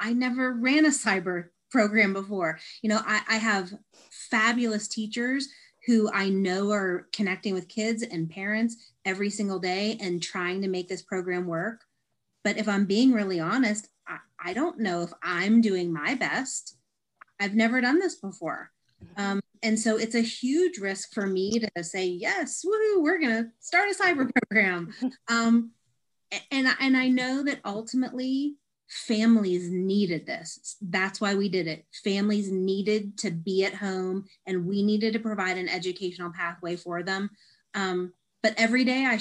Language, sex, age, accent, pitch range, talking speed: English, female, 30-49, American, 185-225 Hz, 165 wpm